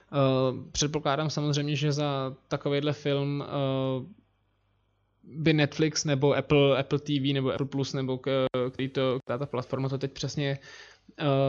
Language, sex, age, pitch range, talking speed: Czech, male, 20-39, 130-150 Hz, 145 wpm